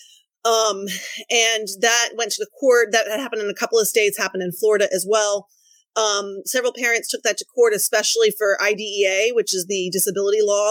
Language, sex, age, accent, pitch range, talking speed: English, female, 30-49, American, 195-245 Hz, 195 wpm